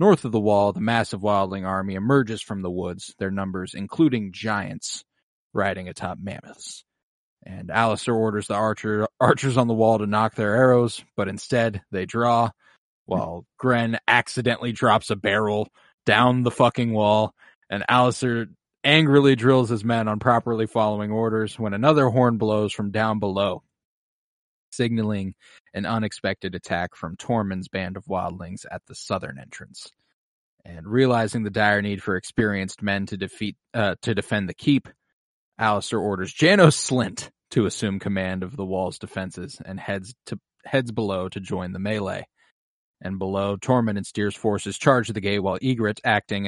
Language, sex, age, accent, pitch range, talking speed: English, male, 20-39, American, 100-120 Hz, 160 wpm